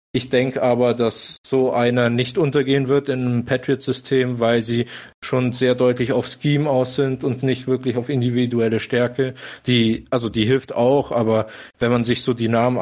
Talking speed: 185 wpm